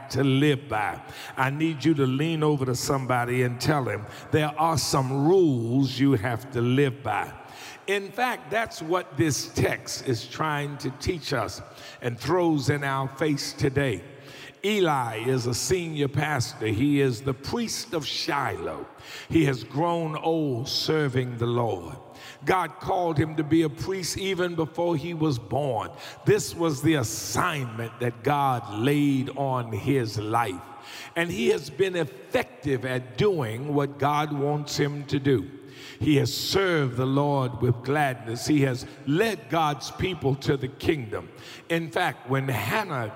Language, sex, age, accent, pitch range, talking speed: English, male, 50-69, American, 130-160 Hz, 155 wpm